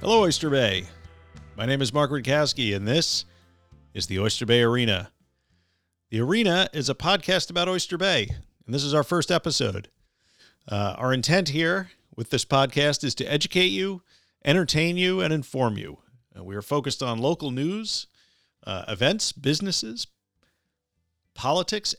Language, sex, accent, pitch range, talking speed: English, male, American, 100-150 Hz, 155 wpm